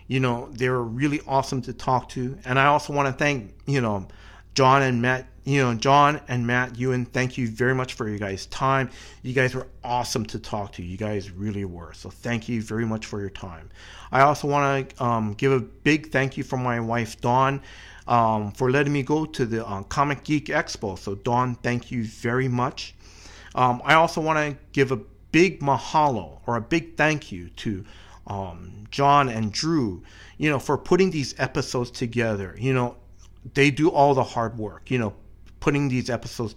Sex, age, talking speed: male, 40-59, 200 wpm